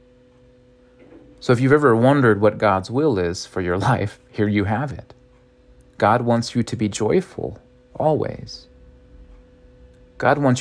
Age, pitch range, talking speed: 40-59, 105-125 Hz, 140 wpm